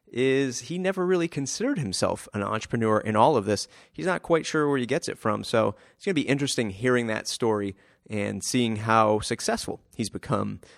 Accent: American